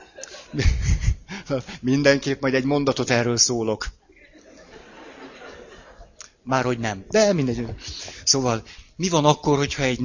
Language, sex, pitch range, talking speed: Hungarian, male, 105-135 Hz, 95 wpm